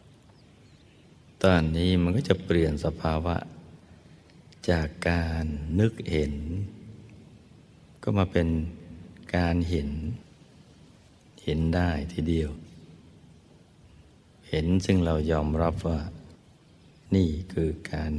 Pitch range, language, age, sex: 80-90 Hz, Thai, 60-79, male